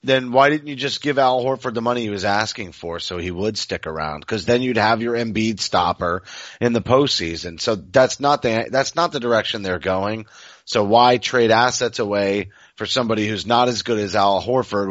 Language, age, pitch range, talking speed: English, 30-49, 100-125 Hz, 215 wpm